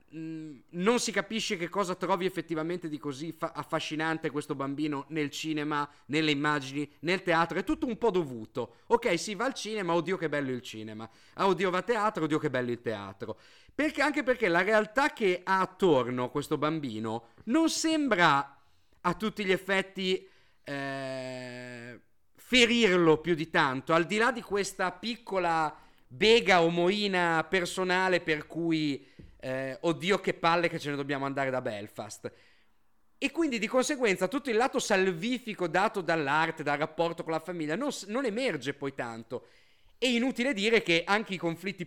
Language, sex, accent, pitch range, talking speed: Italian, male, native, 155-210 Hz, 165 wpm